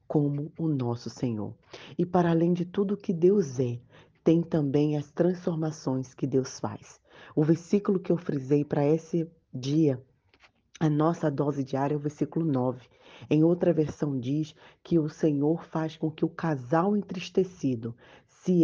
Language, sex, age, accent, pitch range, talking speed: Portuguese, female, 20-39, Brazilian, 145-180 Hz, 160 wpm